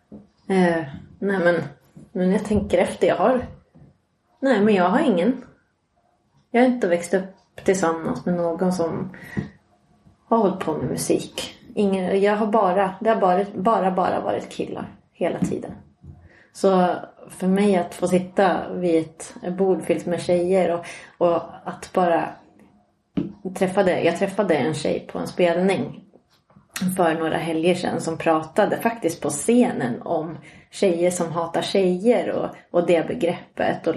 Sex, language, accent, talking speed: female, Swedish, native, 145 wpm